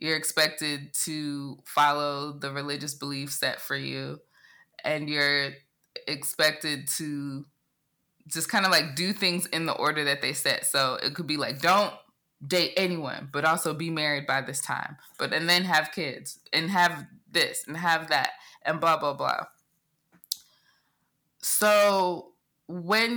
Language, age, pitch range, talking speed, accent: English, 20-39, 140-170 Hz, 150 wpm, American